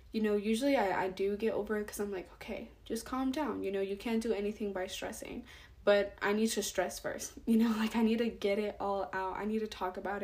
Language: English